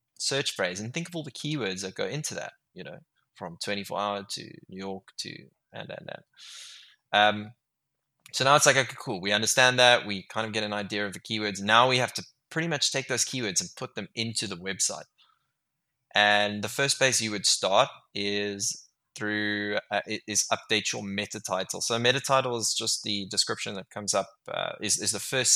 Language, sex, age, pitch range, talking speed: English, male, 20-39, 100-120 Hz, 205 wpm